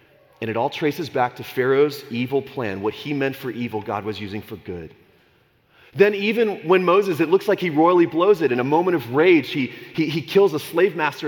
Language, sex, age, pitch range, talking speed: English, male, 30-49, 130-195 Hz, 225 wpm